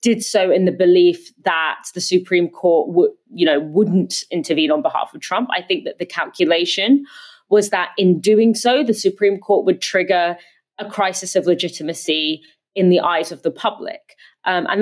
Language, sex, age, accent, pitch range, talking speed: English, female, 20-39, British, 175-215 Hz, 180 wpm